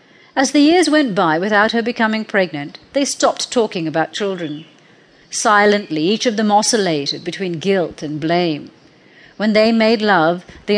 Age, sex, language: 40-59, female, English